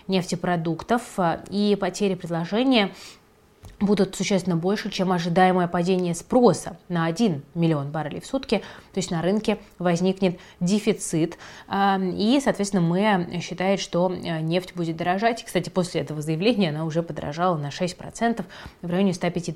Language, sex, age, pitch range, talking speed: Russian, female, 20-39, 165-195 Hz, 130 wpm